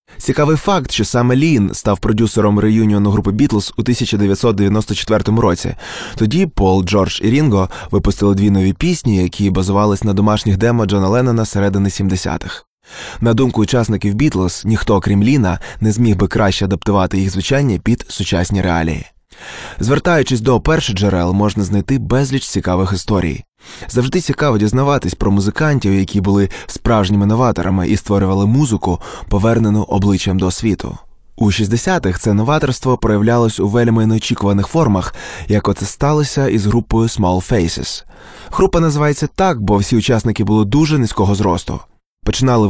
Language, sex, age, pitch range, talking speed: Ukrainian, male, 20-39, 100-120 Hz, 140 wpm